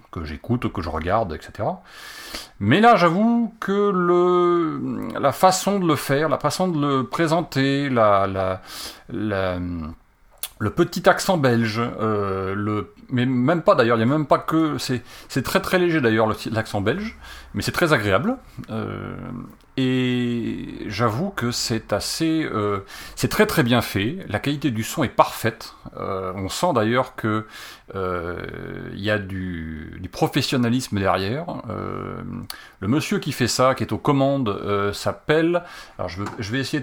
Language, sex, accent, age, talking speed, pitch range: French, male, French, 40-59, 150 wpm, 100-150 Hz